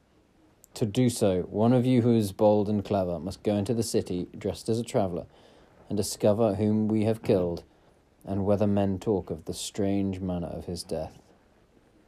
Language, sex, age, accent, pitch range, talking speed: English, male, 30-49, British, 95-115 Hz, 185 wpm